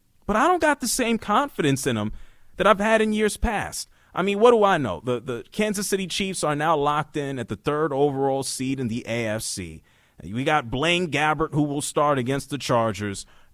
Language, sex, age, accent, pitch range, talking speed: English, male, 30-49, American, 135-225 Hz, 215 wpm